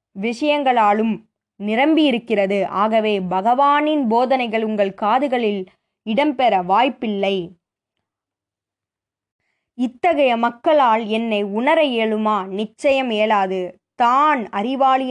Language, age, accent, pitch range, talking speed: Tamil, 20-39, native, 195-250 Hz, 75 wpm